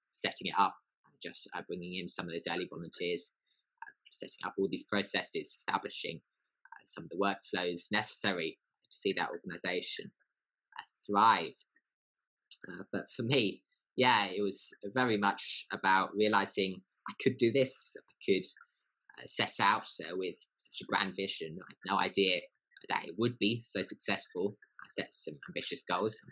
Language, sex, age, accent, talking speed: English, male, 20-39, British, 165 wpm